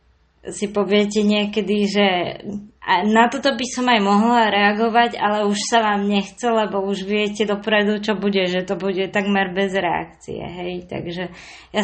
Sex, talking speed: female, 155 wpm